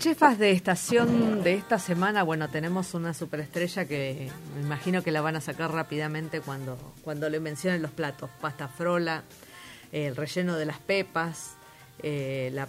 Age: 40-59